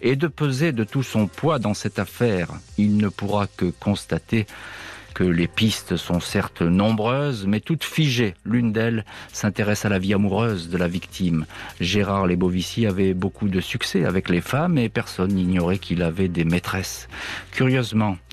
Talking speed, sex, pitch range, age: 165 wpm, male, 90-110 Hz, 50-69